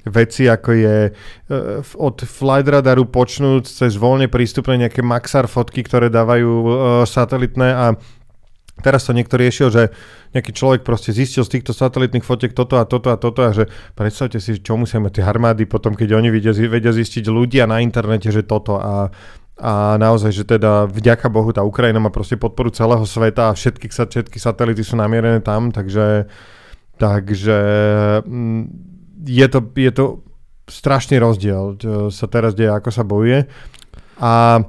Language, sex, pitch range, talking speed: Slovak, male, 110-125 Hz, 165 wpm